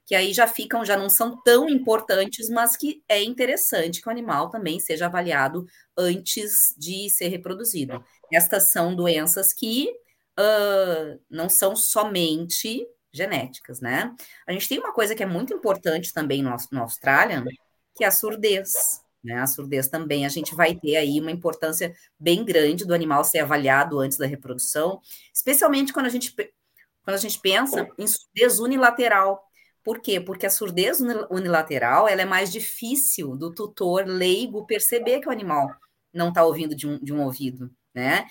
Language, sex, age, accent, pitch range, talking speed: Portuguese, female, 20-39, Brazilian, 155-220 Hz, 170 wpm